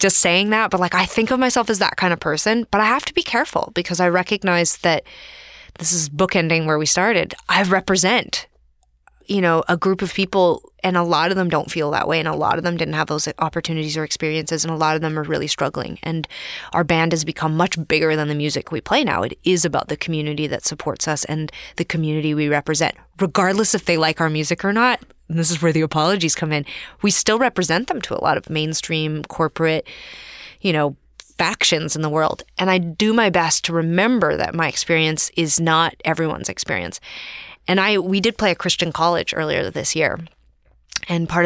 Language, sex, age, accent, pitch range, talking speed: English, female, 20-39, American, 155-180 Hz, 220 wpm